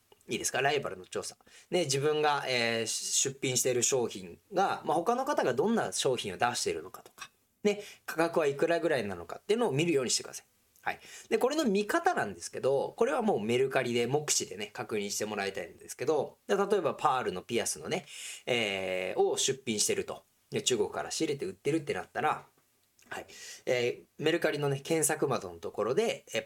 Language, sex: Japanese, male